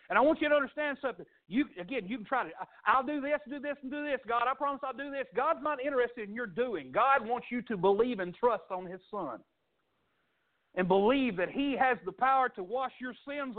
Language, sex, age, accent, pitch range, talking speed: English, male, 50-69, American, 180-265 Hz, 240 wpm